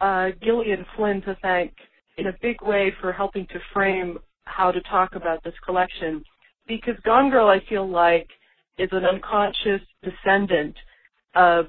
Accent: American